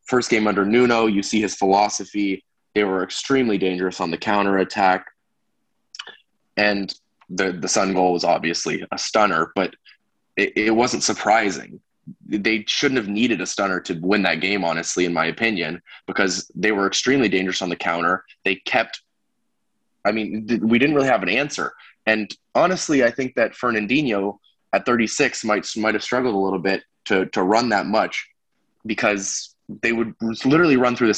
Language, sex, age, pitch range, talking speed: English, male, 20-39, 100-115 Hz, 170 wpm